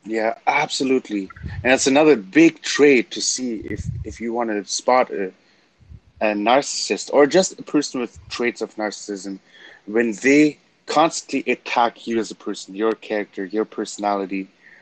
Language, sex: English, male